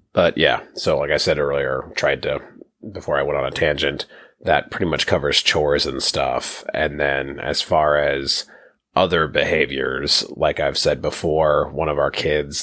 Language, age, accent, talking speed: English, 30-49, American, 175 wpm